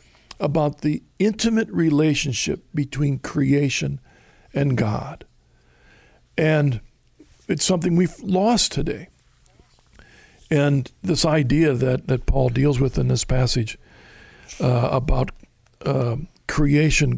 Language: English